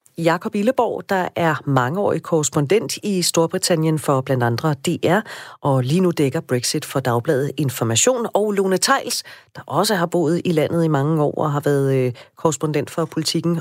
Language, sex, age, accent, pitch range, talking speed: Danish, female, 40-59, native, 140-185 Hz, 170 wpm